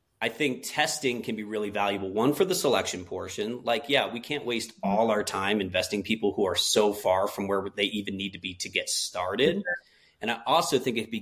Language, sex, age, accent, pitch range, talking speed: English, male, 30-49, American, 100-120 Hz, 220 wpm